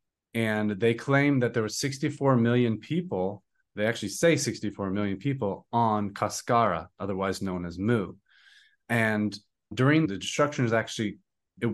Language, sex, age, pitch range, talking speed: English, male, 30-49, 100-120 Hz, 140 wpm